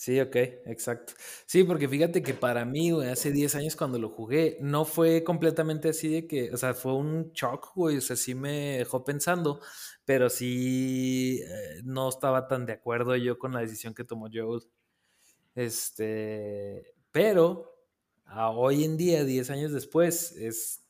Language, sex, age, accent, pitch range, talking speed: Spanish, male, 20-39, Mexican, 120-155 Hz, 170 wpm